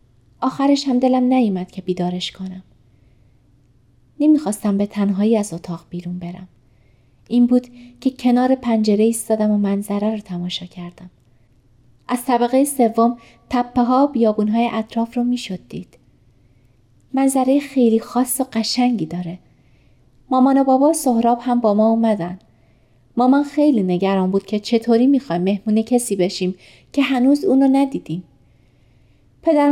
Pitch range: 180-250 Hz